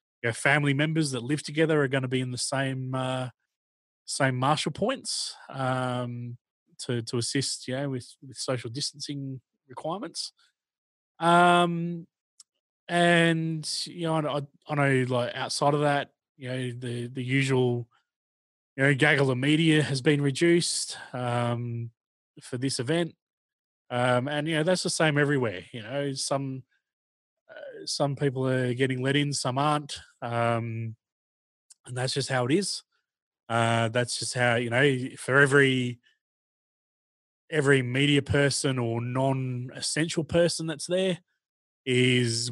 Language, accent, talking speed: English, Australian, 145 wpm